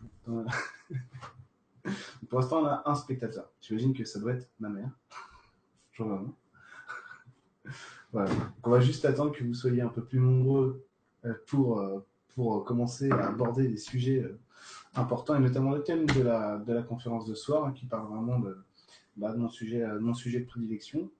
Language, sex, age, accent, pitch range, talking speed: French, male, 30-49, French, 115-145 Hz, 160 wpm